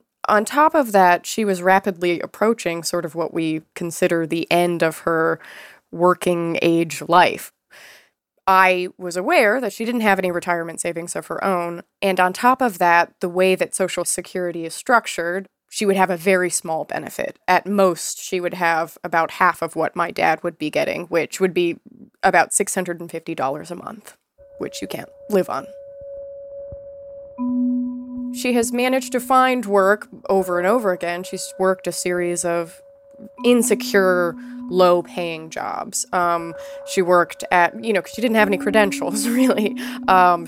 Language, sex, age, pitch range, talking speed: English, female, 20-39, 175-245 Hz, 160 wpm